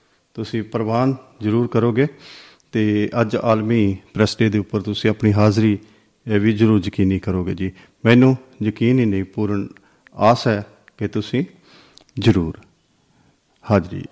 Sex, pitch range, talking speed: male, 105-125 Hz, 125 wpm